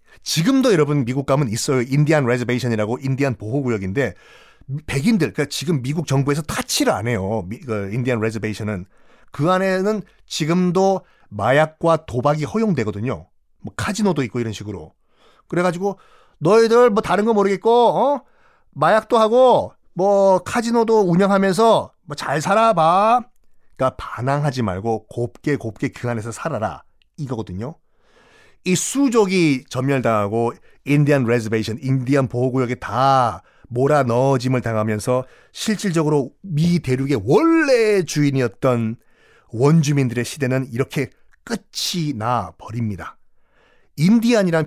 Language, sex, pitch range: Korean, male, 125-180 Hz